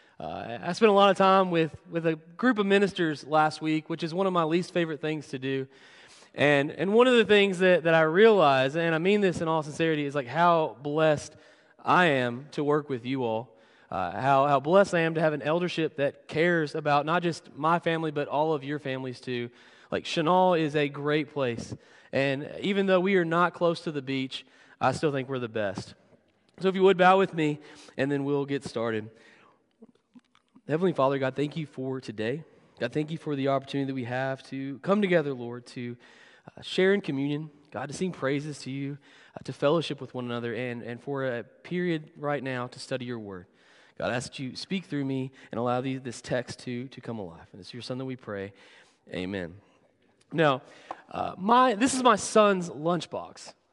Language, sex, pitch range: English, male, 130-175 Hz